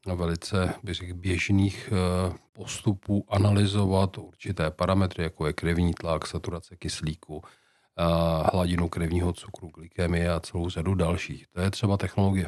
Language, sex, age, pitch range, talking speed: Czech, male, 40-59, 90-100 Hz, 130 wpm